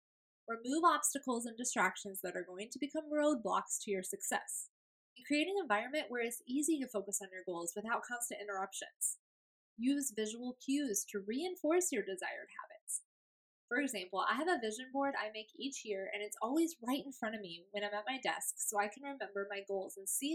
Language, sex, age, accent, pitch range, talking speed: English, female, 10-29, American, 205-295 Hz, 200 wpm